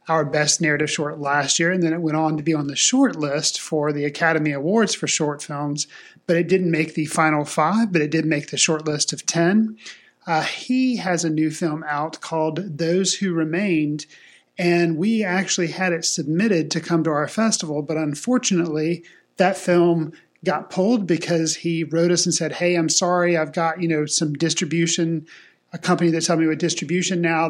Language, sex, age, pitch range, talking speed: English, male, 40-59, 155-175 Hz, 200 wpm